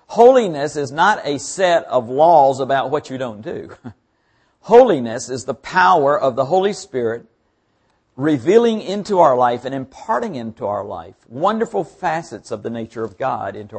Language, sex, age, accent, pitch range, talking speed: English, male, 50-69, American, 125-195 Hz, 160 wpm